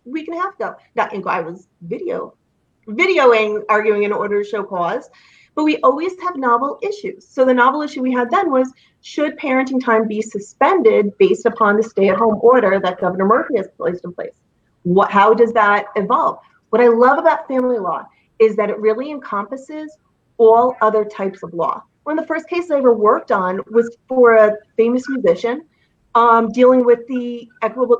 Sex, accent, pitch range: female, American, 200-260 Hz